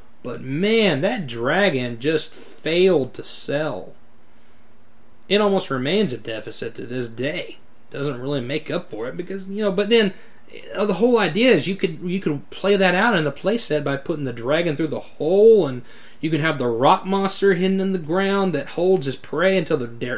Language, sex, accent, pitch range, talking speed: English, male, American, 145-200 Hz, 200 wpm